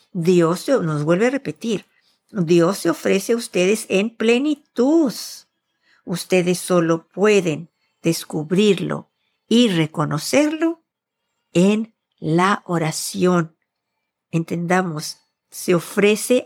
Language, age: Spanish, 50-69